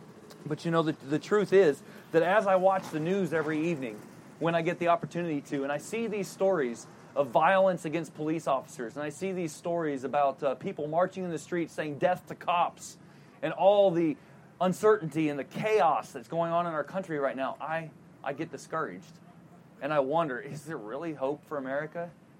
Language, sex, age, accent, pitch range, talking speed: English, male, 30-49, American, 160-195 Hz, 200 wpm